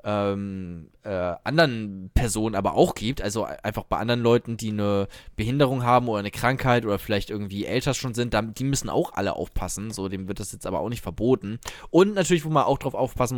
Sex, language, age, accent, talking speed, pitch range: male, German, 20-39, German, 210 wpm, 100-130 Hz